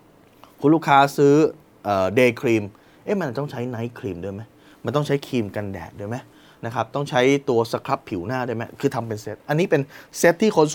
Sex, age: male, 20-39